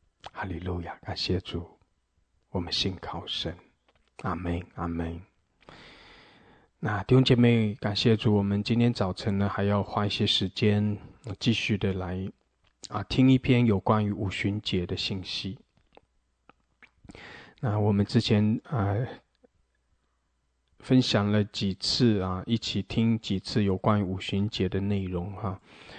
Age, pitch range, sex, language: 20-39, 100-120 Hz, male, English